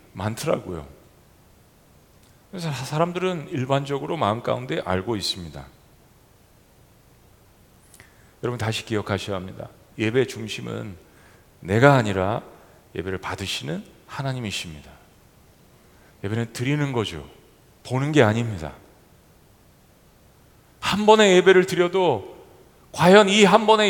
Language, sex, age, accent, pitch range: Korean, male, 40-59, native, 120-190 Hz